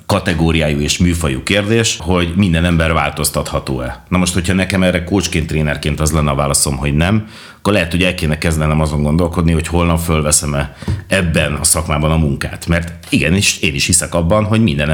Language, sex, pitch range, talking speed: Hungarian, male, 80-100 Hz, 180 wpm